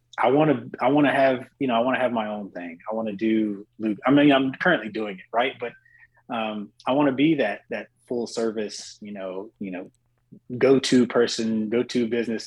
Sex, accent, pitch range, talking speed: male, American, 105-120 Hz, 215 wpm